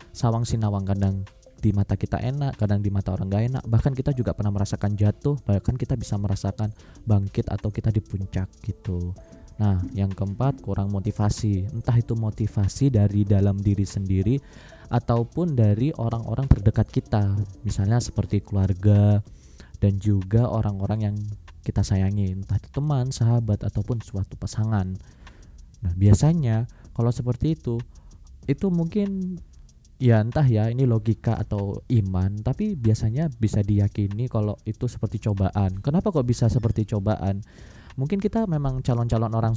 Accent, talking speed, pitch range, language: native, 145 wpm, 100-125 Hz, Indonesian